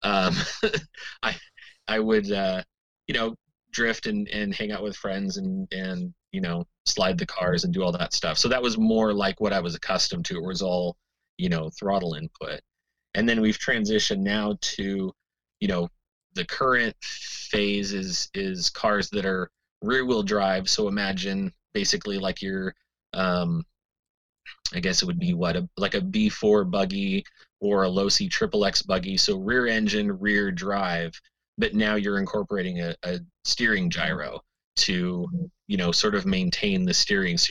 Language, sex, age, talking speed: English, male, 30-49, 175 wpm